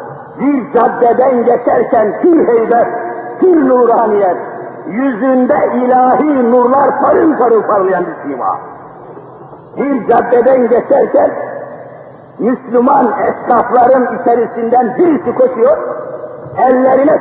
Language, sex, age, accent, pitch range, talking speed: Turkish, male, 50-69, native, 250-305 Hz, 85 wpm